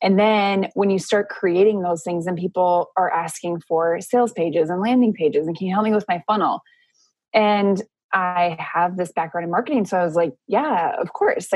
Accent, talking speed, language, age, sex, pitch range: American, 210 wpm, English, 20-39, female, 170-200 Hz